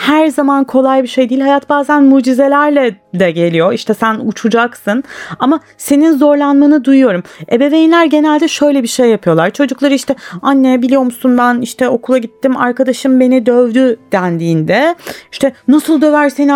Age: 30-49